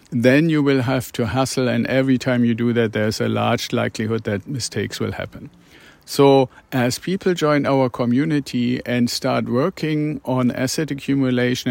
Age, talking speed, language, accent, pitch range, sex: 50-69, 165 wpm, English, German, 115-130 Hz, male